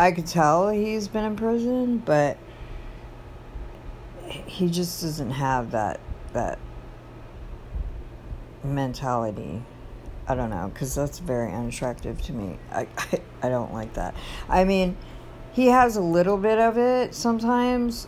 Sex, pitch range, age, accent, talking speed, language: female, 115-155 Hz, 50-69, American, 135 wpm, English